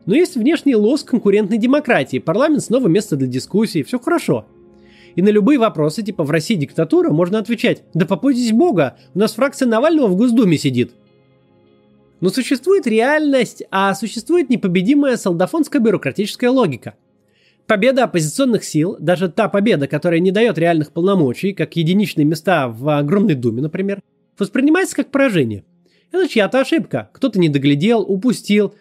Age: 20-39